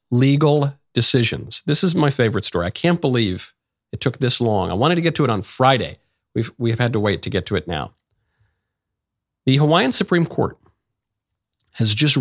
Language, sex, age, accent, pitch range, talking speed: English, male, 50-69, American, 105-140 Hz, 185 wpm